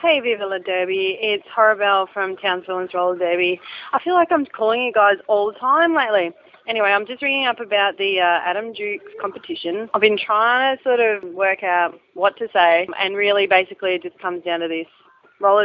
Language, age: English, 20-39